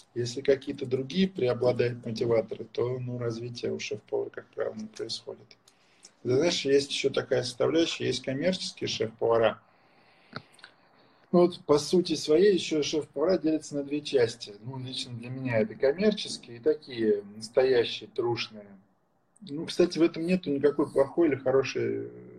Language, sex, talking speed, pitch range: Russian, male, 135 wpm, 115-150 Hz